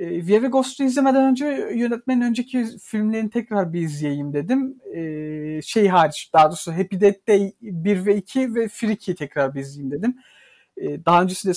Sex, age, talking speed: male, 50-69, 150 wpm